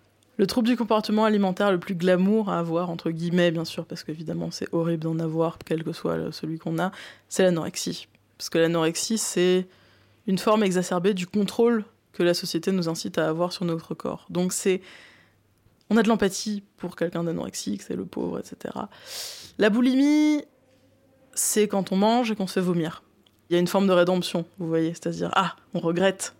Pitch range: 165-190 Hz